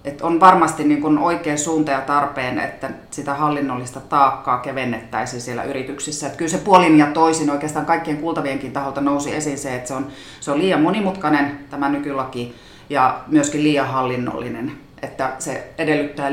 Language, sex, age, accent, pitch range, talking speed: Finnish, female, 30-49, native, 135-150 Hz, 160 wpm